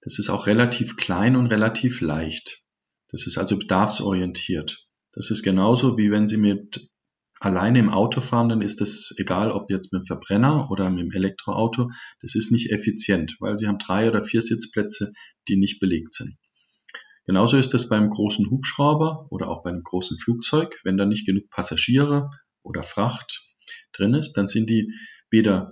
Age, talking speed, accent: 50-69, 175 wpm, German